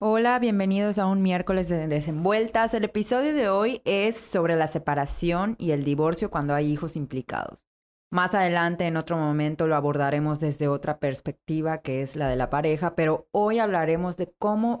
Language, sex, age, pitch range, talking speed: Spanish, female, 20-39, 150-180 Hz, 175 wpm